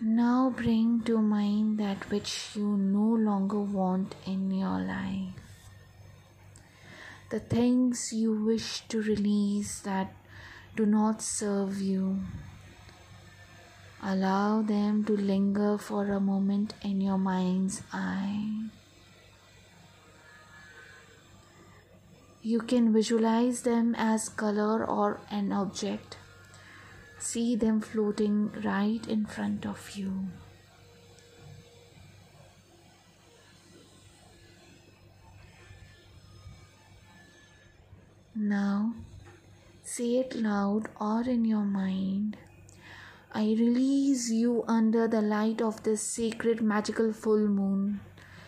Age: 20-39